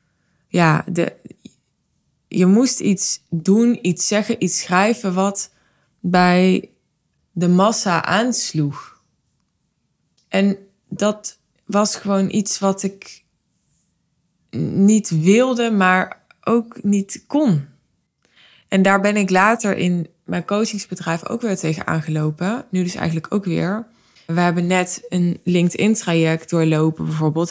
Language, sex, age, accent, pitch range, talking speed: Dutch, female, 20-39, Dutch, 160-195 Hz, 110 wpm